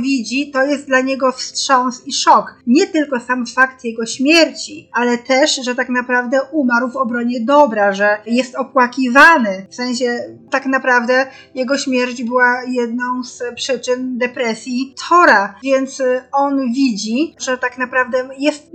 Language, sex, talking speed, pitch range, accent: Polish, female, 145 wpm, 245-290 Hz, native